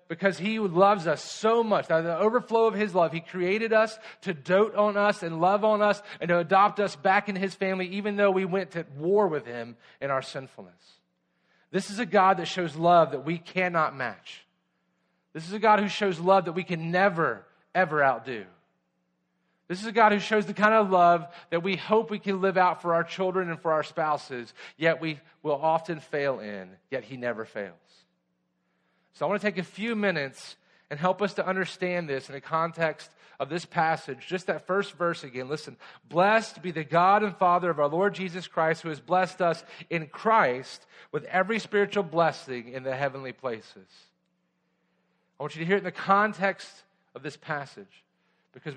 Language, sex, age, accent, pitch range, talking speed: English, male, 40-59, American, 145-195 Hz, 200 wpm